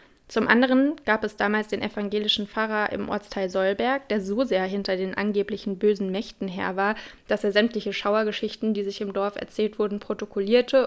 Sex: female